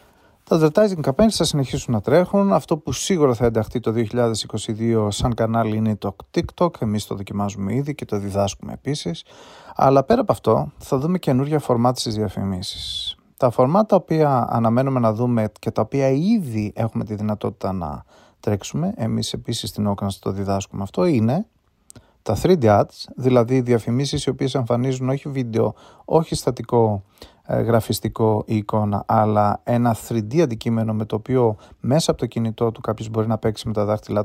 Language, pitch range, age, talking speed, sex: Greek, 105-130 Hz, 30-49, 165 wpm, male